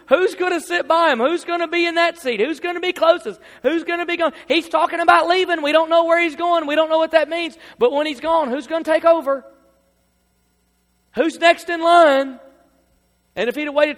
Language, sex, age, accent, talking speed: English, male, 40-59, American, 245 wpm